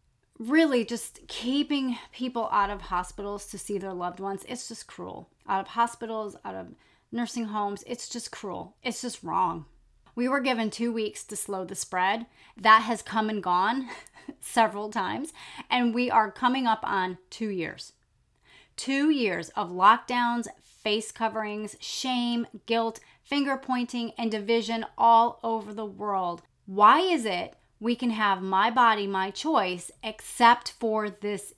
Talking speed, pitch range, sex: 155 wpm, 200-245 Hz, female